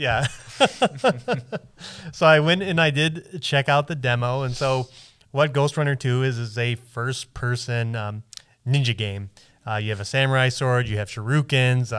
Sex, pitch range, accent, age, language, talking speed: male, 110-130 Hz, American, 20-39, English, 170 wpm